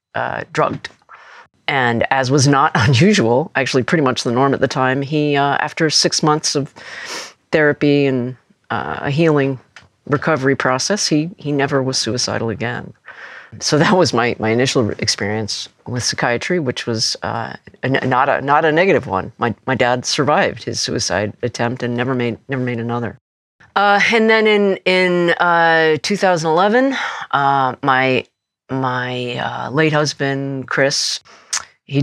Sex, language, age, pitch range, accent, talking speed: female, English, 40-59, 120-150 Hz, American, 155 wpm